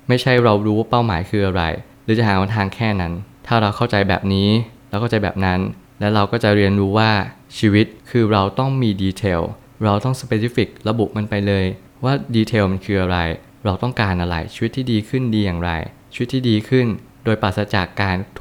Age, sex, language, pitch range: 20-39, male, Thai, 95-120 Hz